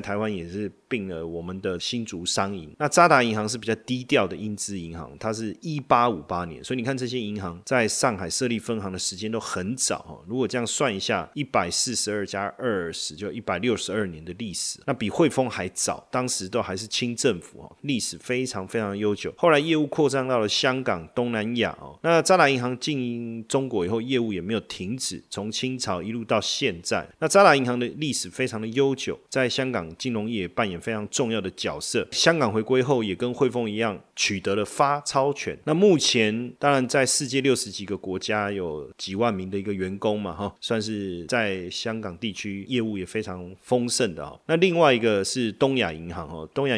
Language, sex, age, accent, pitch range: Chinese, male, 30-49, native, 100-125 Hz